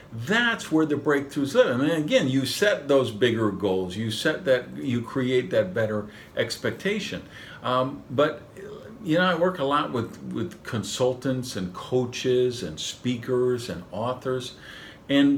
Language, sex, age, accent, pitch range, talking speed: English, male, 50-69, American, 110-180 Hz, 150 wpm